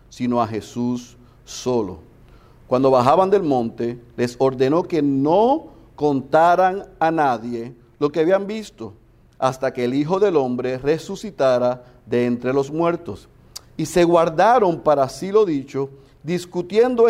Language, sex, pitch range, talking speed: Spanish, male, 135-190 Hz, 135 wpm